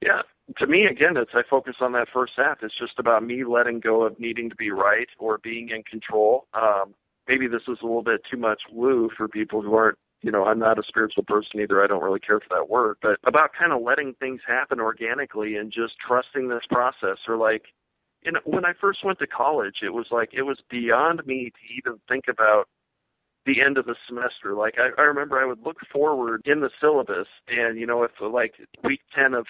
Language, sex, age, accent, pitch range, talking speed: English, male, 40-59, American, 115-135 Hz, 230 wpm